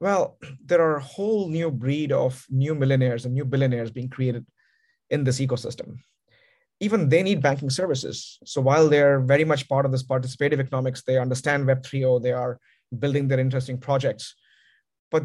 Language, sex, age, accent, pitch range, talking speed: English, male, 30-49, Indian, 130-155 Hz, 170 wpm